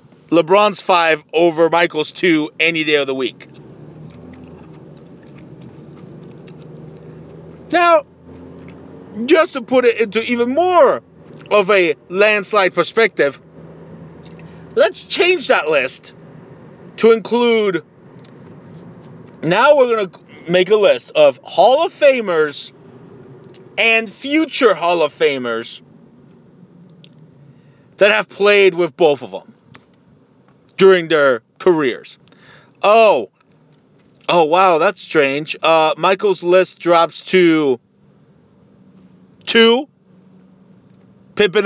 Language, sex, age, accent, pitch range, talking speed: English, male, 40-59, American, 165-210 Hz, 95 wpm